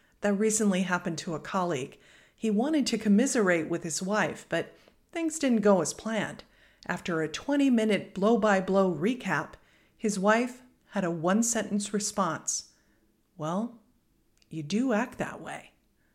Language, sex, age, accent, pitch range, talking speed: English, female, 50-69, American, 180-235 Hz, 135 wpm